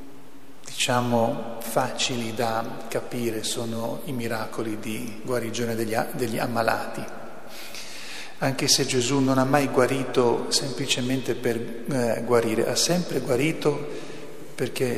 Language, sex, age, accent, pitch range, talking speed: Italian, male, 40-59, native, 115-130 Hz, 105 wpm